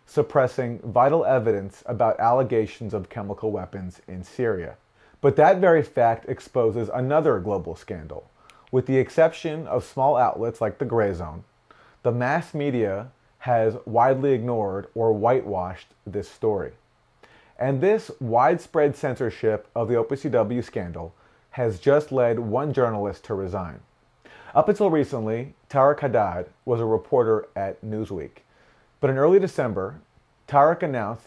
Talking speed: 130 wpm